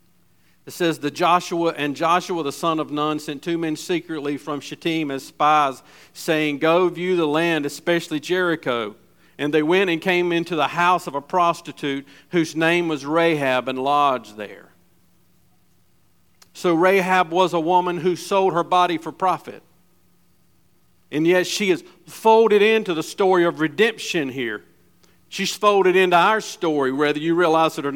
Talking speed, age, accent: 160 wpm, 50-69, American